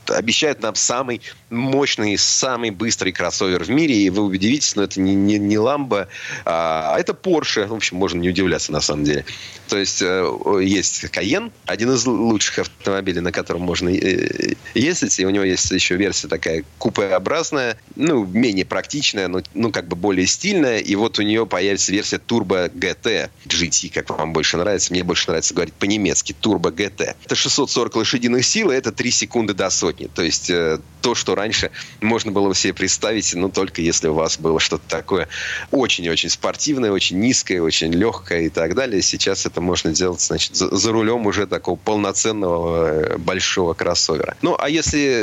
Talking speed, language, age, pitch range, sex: 170 wpm, Russian, 30-49, 90-115 Hz, male